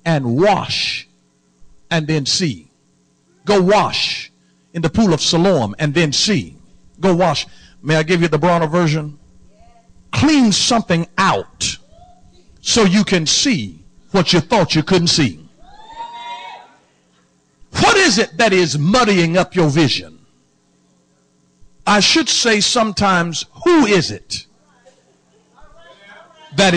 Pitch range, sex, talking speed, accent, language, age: 160-220 Hz, male, 120 wpm, American, English, 60-79